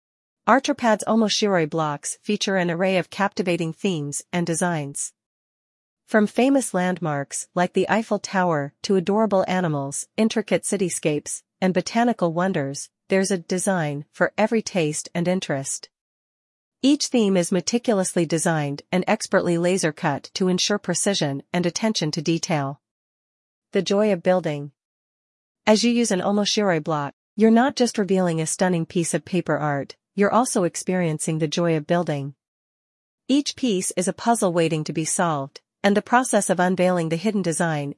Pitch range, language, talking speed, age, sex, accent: 155-205 Hz, English, 145 wpm, 40-59, female, American